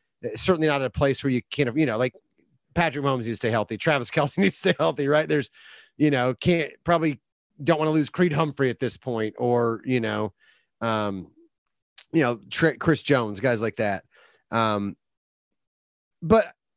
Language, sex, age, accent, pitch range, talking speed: English, male, 30-49, American, 110-140 Hz, 185 wpm